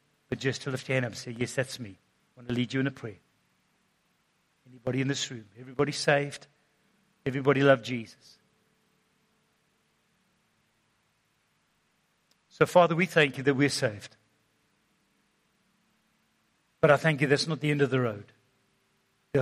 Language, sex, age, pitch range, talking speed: English, male, 50-69, 125-195 Hz, 150 wpm